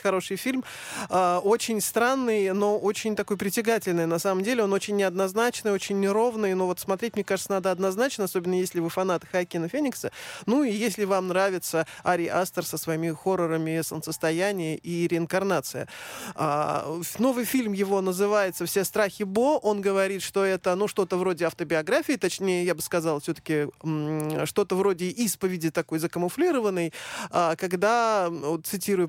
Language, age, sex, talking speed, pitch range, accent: Russian, 20-39, male, 150 wpm, 175-220 Hz, native